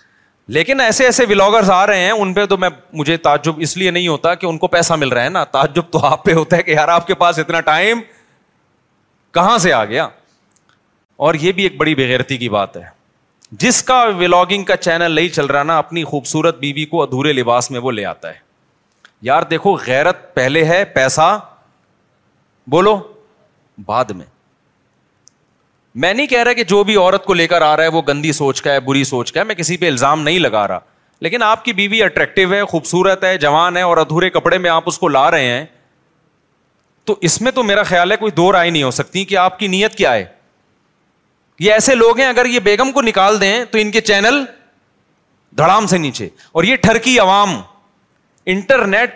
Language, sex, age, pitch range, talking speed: Urdu, male, 30-49, 160-215 Hz, 210 wpm